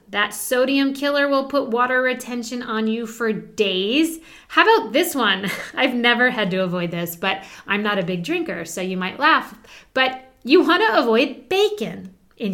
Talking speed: 180 wpm